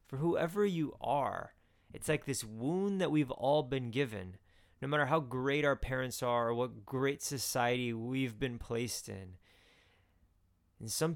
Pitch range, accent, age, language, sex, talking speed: 100-130 Hz, American, 20-39, English, male, 160 wpm